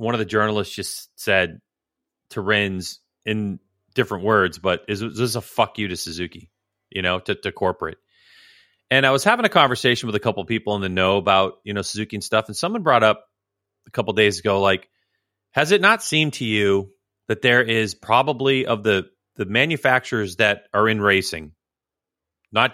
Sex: male